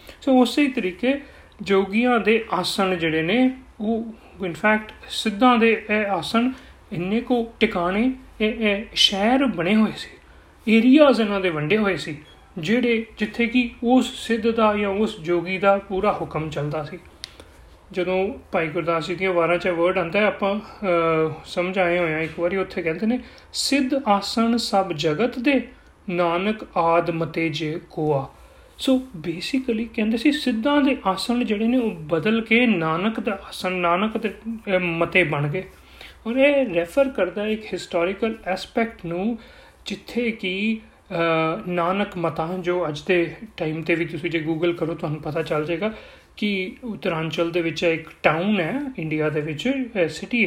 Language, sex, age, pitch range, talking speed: Punjabi, male, 30-49, 170-235 Hz, 140 wpm